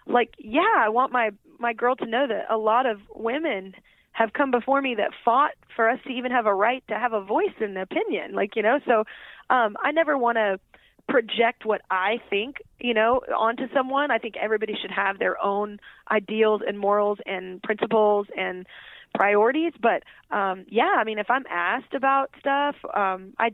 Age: 20-39